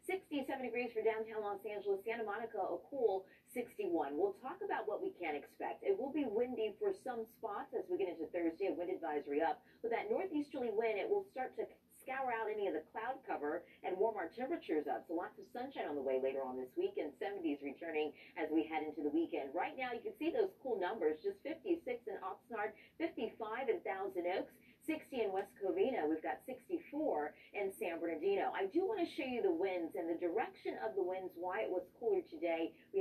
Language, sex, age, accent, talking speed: English, female, 30-49, American, 220 wpm